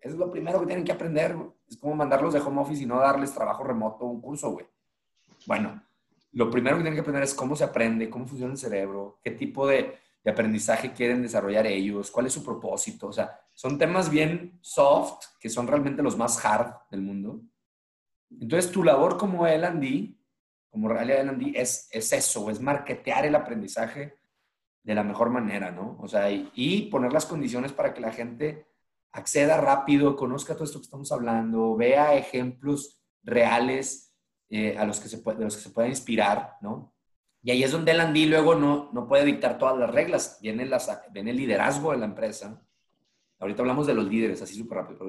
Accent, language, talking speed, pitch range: Mexican, Spanish, 195 wpm, 115-145 Hz